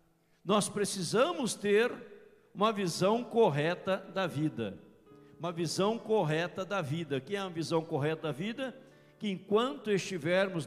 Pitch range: 160-210 Hz